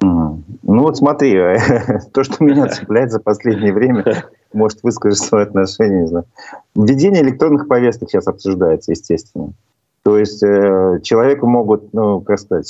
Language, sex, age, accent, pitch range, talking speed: Russian, male, 40-59, native, 100-115 Hz, 145 wpm